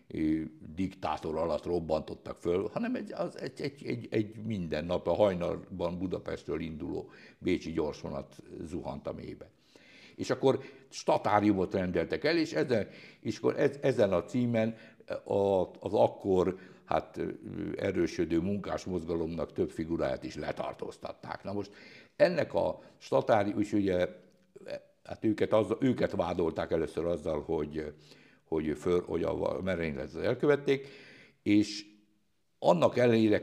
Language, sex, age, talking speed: Hungarian, male, 60-79, 120 wpm